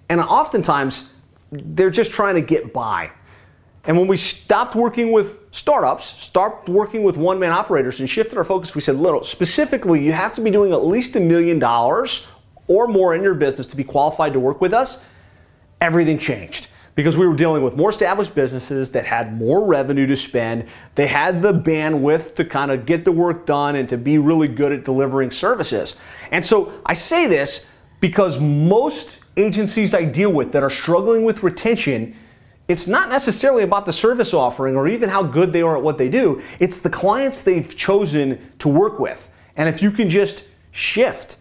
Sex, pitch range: male, 135-200 Hz